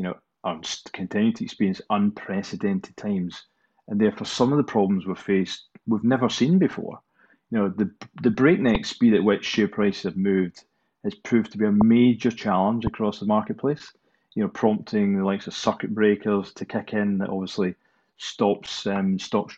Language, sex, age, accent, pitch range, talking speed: English, male, 30-49, British, 100-130 Hz, 180 wpm